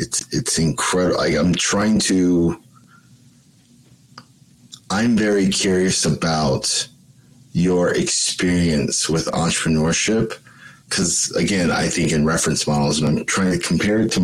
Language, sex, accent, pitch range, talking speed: English, male, American, 85-105 Hz, 120 wpm